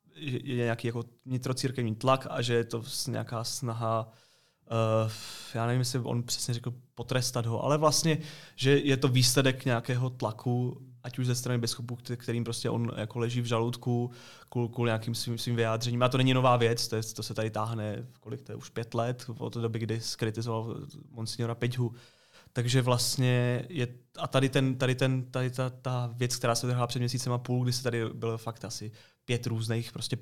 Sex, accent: male, native